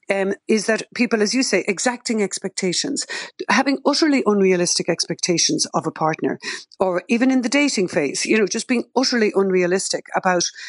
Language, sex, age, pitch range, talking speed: English, female, 60-79, 185-230 Hz, 165 wpm